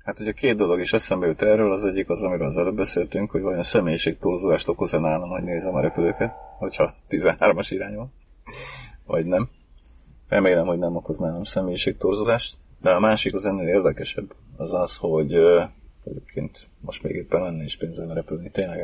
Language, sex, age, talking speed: Hungarian, male, 40-59, 180 wpm